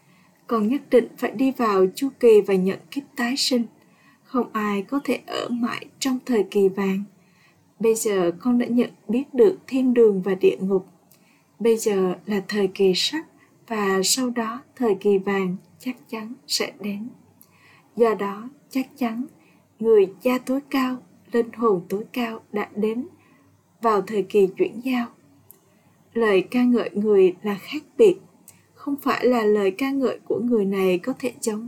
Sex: female